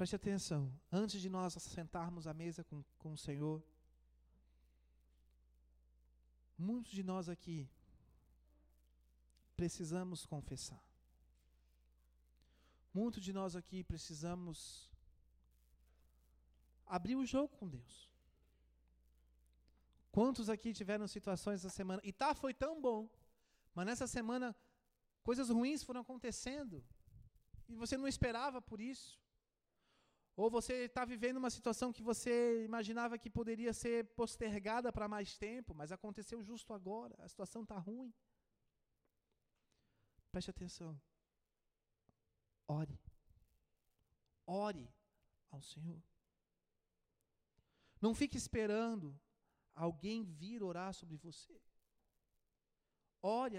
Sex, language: male, Portuguese